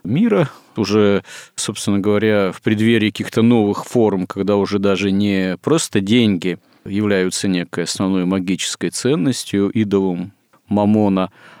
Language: Russian